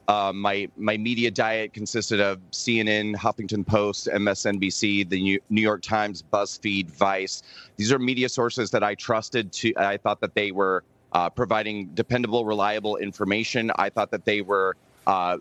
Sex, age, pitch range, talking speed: male, 30-49, 100-120 Hz, 160 wpm